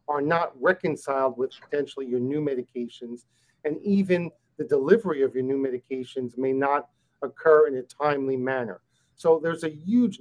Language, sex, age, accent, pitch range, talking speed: English, male, 50-69, American, 130-165 Hz, 160 wpm